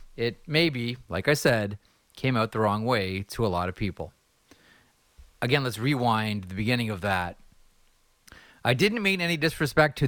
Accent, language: American, English